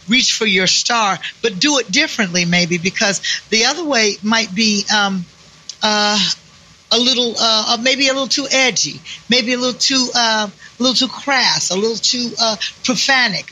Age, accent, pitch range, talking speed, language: 50-69, American, 180-230 Hz, 175 wpm, English